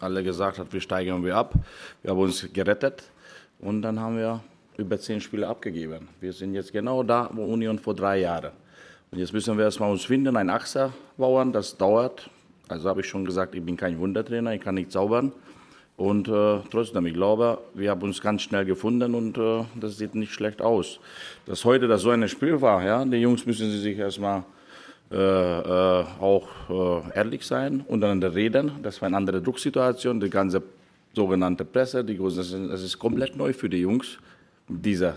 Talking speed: 200 wpm